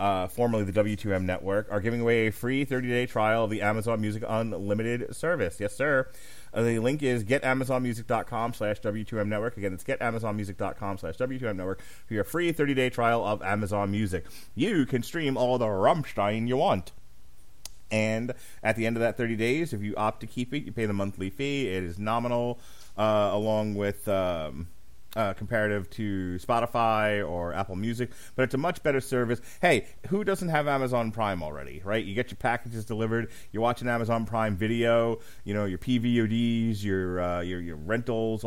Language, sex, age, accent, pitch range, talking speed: English, male, 30-49, American, 105-120 Hz, 175 wpm